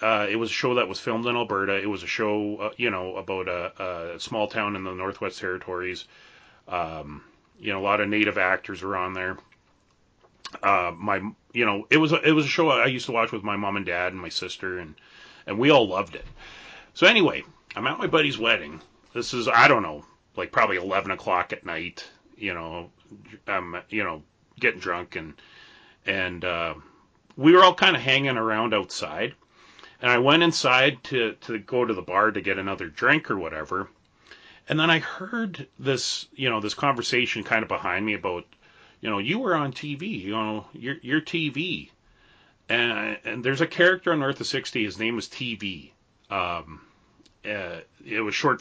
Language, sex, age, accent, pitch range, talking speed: English, male, 30-49, American, 95-130 Hz, 200 wpm